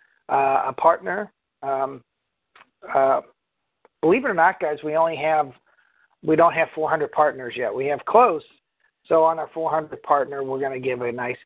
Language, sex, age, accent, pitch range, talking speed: English, male, 50-69, American, 145-180 Hz, 175 wpm